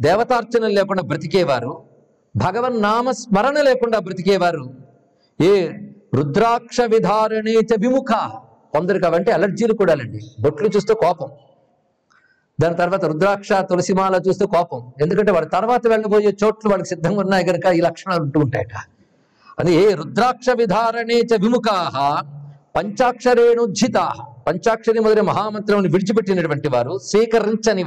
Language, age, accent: Telugu, 50-69, native